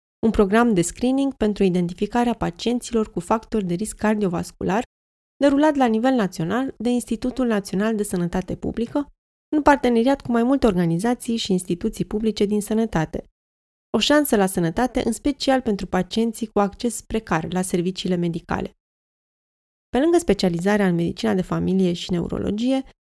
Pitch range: 185-235 Hz